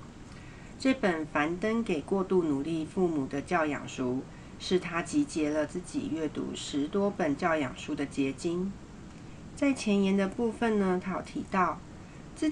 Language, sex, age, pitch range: Chinese, female, 40-59, 155-205 Hz